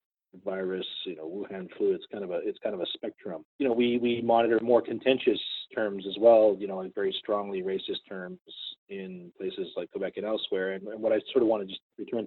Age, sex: 30-49, male